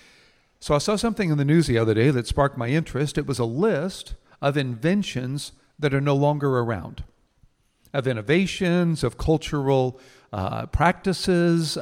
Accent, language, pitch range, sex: American, English, 130-180 Hz, male